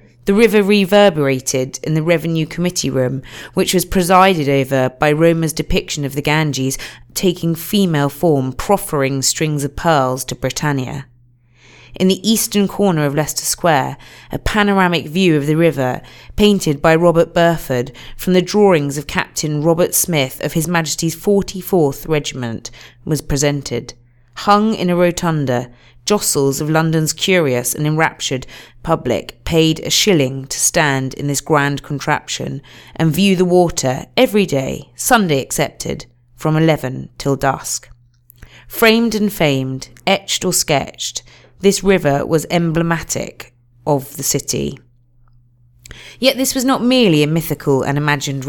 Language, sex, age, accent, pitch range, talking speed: English, female, 30-49, British, 130-175 Hz, 140 wpm